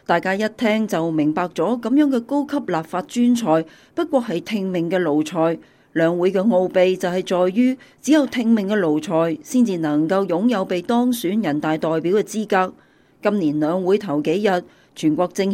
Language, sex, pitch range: Chinese, female, 175-230 Hz